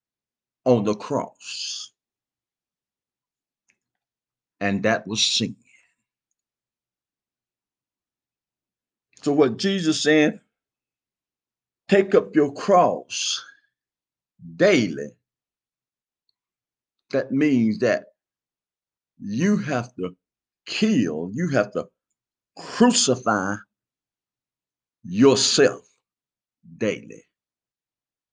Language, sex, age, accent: English, male, 50-69, American